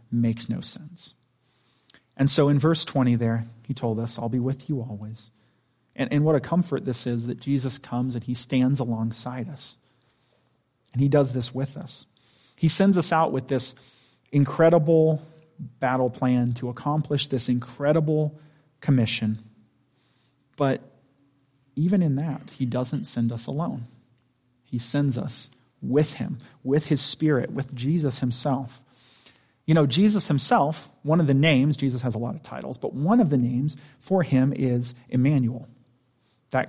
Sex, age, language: male, 30-49, English